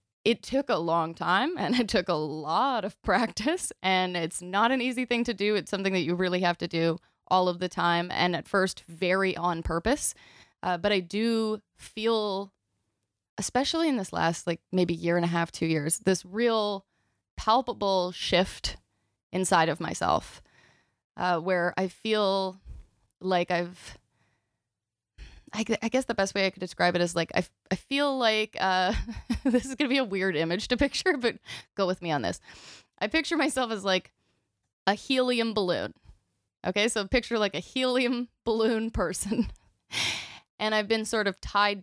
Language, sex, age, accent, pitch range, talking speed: English, female, 20-39, American, 170-220 Hz, 175 wpm